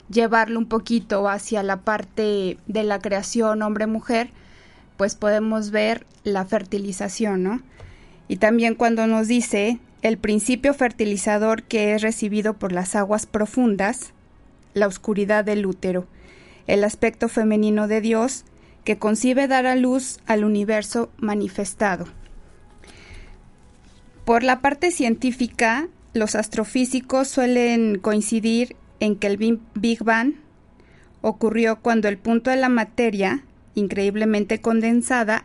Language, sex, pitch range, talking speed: Spanish, female, 205-235 Hz, 120 wpm